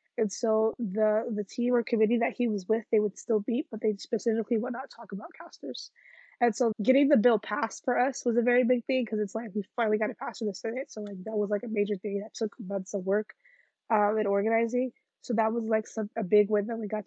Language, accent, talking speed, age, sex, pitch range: English, American, 260 wpm, 20-39, female, 210-235 Hz